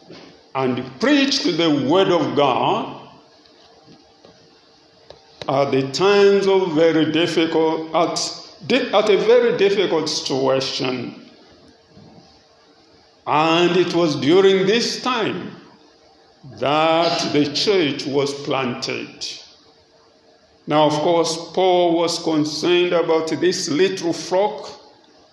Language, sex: English, male